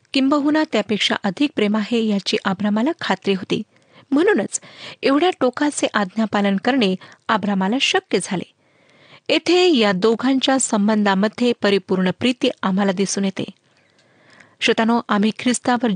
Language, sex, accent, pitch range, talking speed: Marathi, female, native, 200-260 Hz, 90 wpm